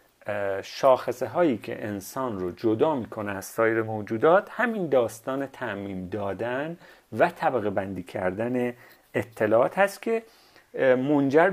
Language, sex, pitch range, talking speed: Persian, male, 110-155 Hz, 115 wpm